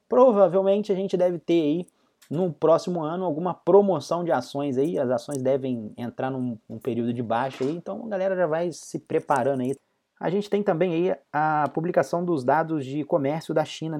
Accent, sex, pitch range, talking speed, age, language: Brazilian, male, 135-190 Hz, 190 wpm, 30-49, English